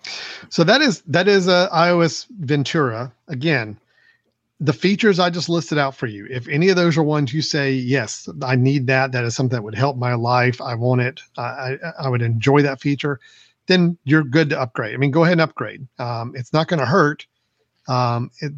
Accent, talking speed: American, 215 wpm